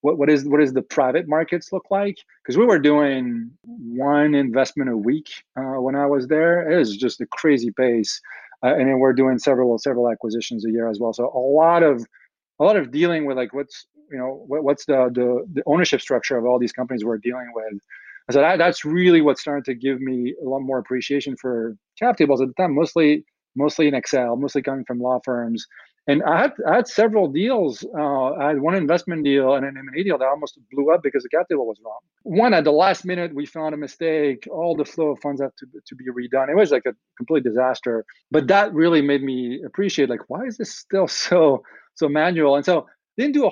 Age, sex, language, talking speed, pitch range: 30-49, male, English, 230 wpm, 125-155 Hz